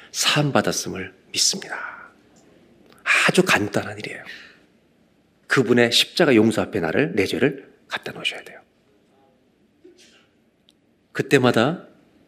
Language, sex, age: Korean, male, 40-59